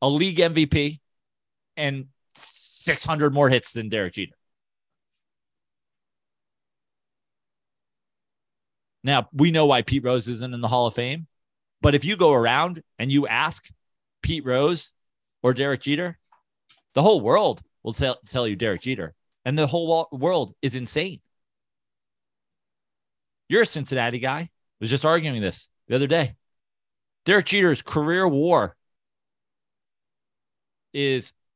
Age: 30-49